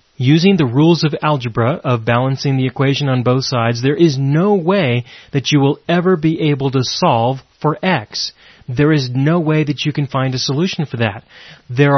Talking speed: 195 wpm